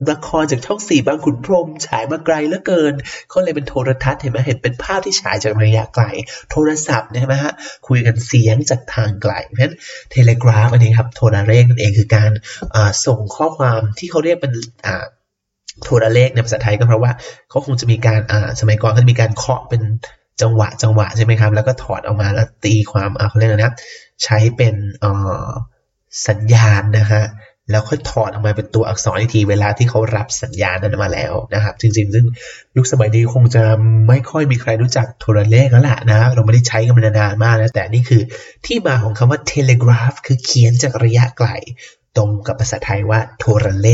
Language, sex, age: Thai, male, 20-39